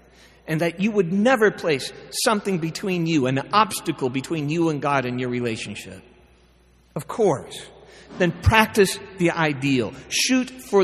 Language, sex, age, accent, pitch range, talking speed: English, male, 40-59, American, 130-195 Hz, 145 wpm